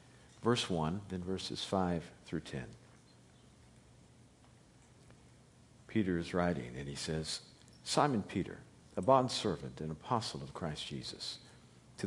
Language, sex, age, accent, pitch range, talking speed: English, male, 50-69, American, 85-115 Hz, 120 wpm